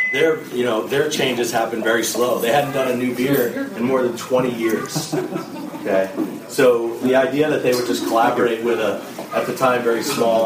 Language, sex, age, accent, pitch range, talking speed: English, male, 40-59, American, 115-130 Hz, 200 wpm